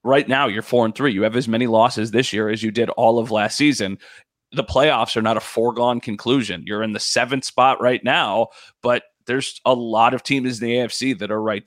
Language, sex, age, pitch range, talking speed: English, male, 30-49, 110-140 Hz, 230 wpm